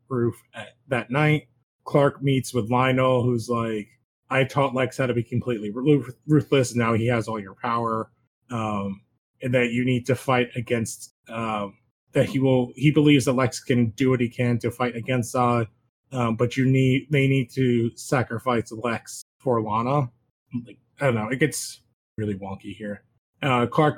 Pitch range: 115-135 Hz